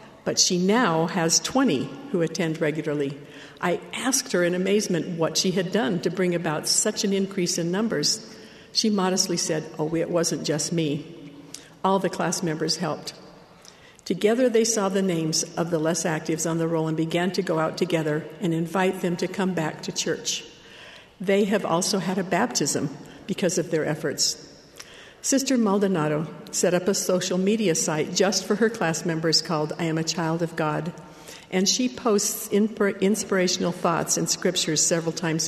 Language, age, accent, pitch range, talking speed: English, 60-79, American, 160-195 Hz, 175 wpm